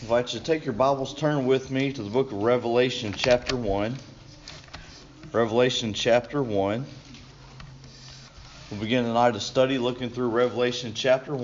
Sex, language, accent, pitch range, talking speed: male, English, American, 105-130 Hz, 150 wpm